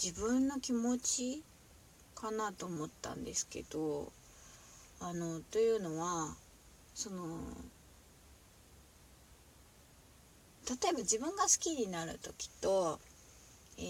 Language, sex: Japanese, female